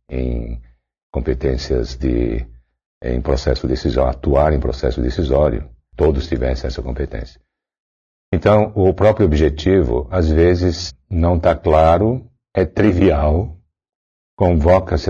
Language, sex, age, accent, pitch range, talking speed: Portuguese, male, 60-79, Brazilian, 70-85 Hz, 105 wpm